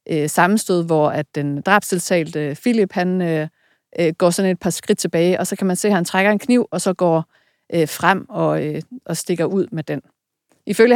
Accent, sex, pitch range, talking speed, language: native, female, 160-200 Hz, 175 wpm, Danish